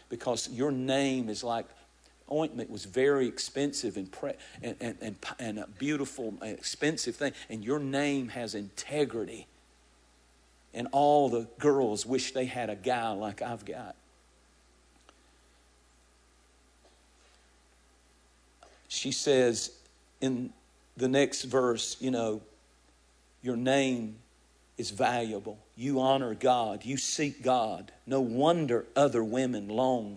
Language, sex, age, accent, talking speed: English, male, 50-69, American, 115 wpm